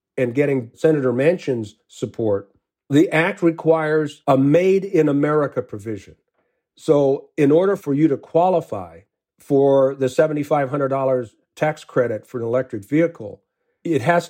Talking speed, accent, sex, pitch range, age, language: 130 wpm, American, male, 130-165 Hz, 50-69, English